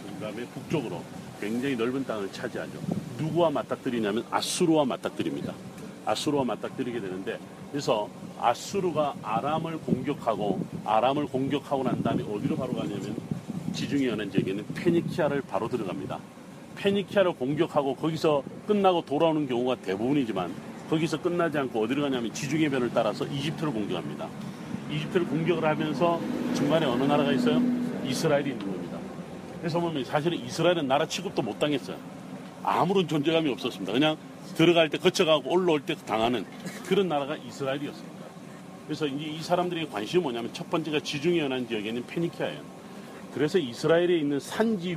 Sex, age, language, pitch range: male, 40-59, Korean, 130-180 Hz